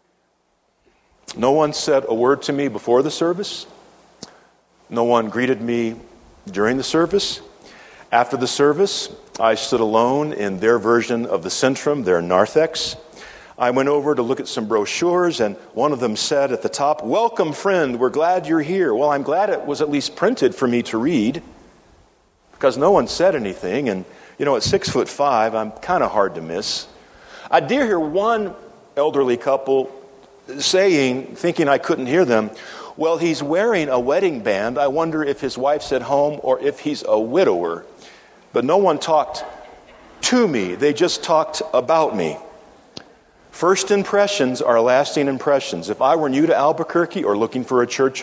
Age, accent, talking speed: 50-69, American, 175 wpm